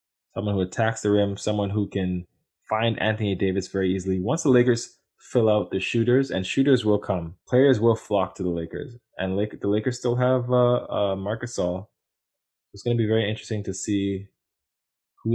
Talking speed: 190 wpm